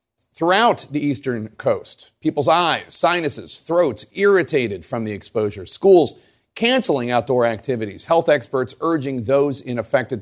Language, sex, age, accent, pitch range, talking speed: English, male, 40-59, American, 115-145 Hz, 130 wpm